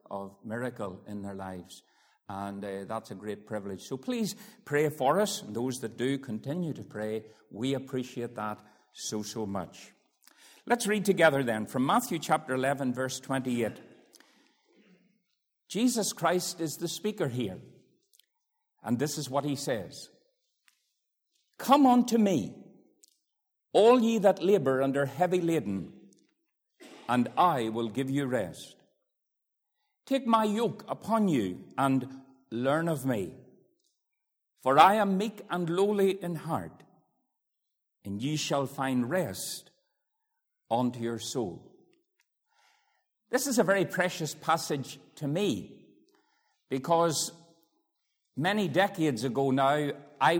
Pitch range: 125-205 Hz